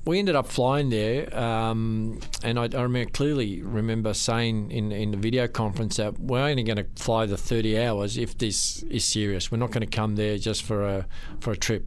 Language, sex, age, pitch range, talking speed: English, male, 50-69, 110-125 Hz, 215 wpm